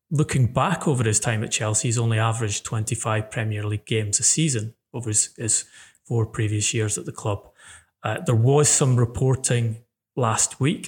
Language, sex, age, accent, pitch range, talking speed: English, male, 30-49, British, 110-130 Hz, 175 wpm